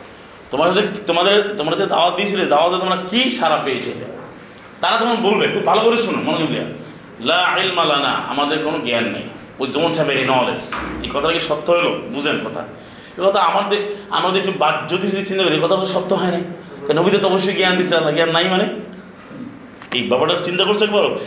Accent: native